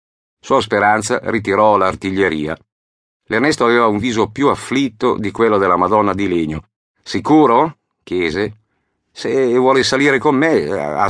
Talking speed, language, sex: 130 wpm, Italian, male